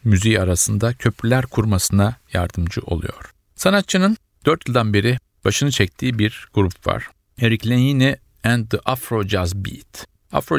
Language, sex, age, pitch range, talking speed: Turkish, male, 50-69, 100-120 Hz, 130 wpm